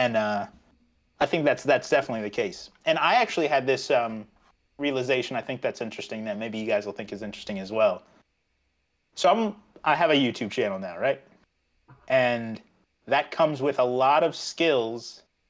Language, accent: English, American